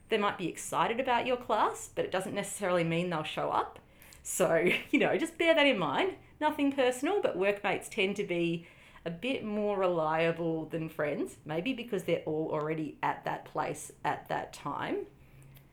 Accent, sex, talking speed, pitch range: Australian, female, 180 wpm, 165-240 Hz